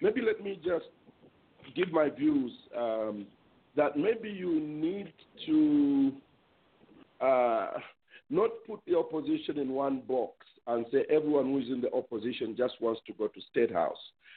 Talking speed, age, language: 150 wpm, 50-69, English